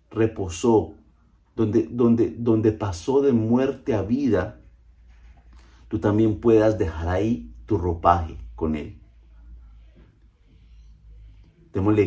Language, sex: Spanish, male